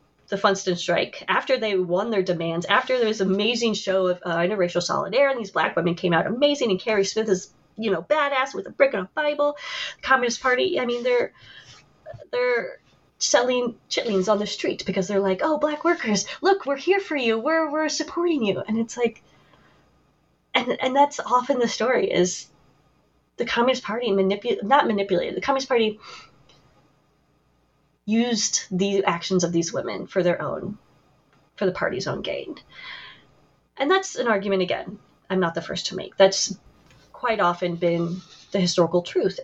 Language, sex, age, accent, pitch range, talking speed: English, female, 20-39, American, 180-265 Hz, 175 wpm